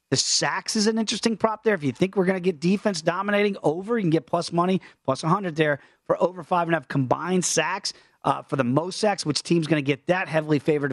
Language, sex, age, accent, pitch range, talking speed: English, male, 40-59, American, 150-210 Hz, 255 wpm